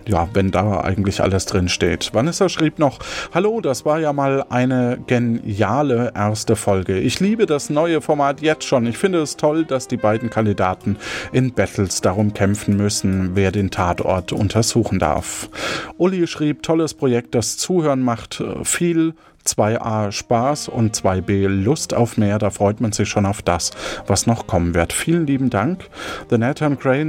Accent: German